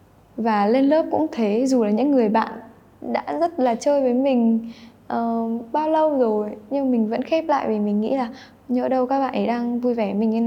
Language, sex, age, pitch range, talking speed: Vietnamese, female, 10-29, 205-250 Hz, 230 wpm